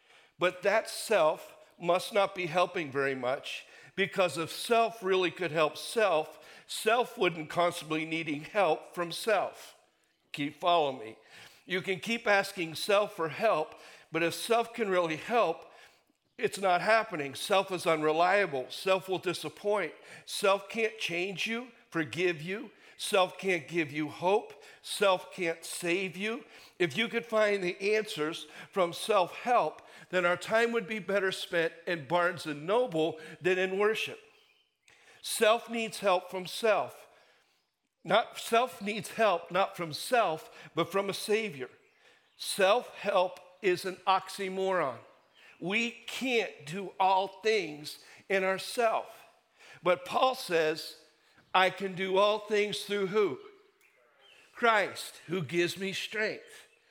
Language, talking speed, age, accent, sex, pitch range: English, 135 wpm, 60-79, American, male, 170-220 Hz